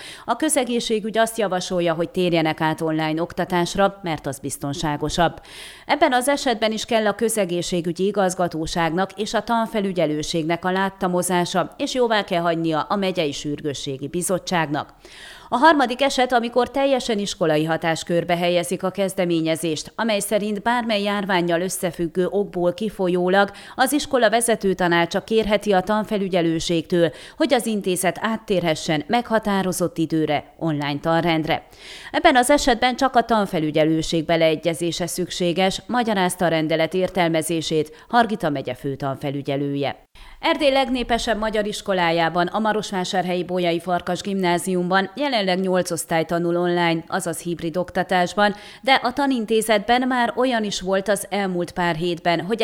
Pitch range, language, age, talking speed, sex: 165-215 Hz, Hungarian, 30-49, 125 wpm, female